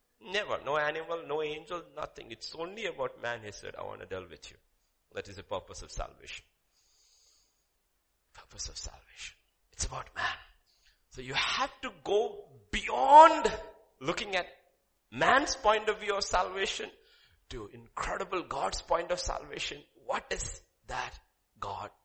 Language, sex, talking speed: English, male, 145 wpm